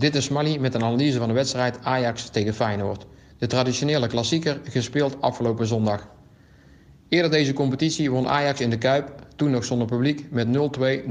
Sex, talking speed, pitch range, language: male, 175 wpm, 115-135 Hz, Dutch